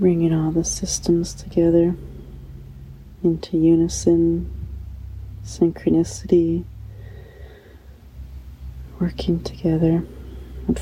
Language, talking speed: English, 60 wpm